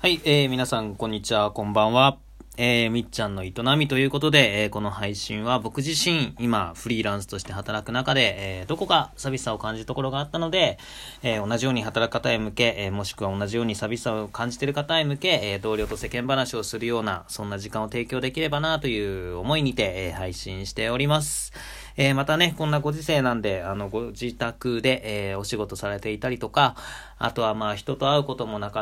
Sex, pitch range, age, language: male, 105-135 Hz, 20-39, Japanese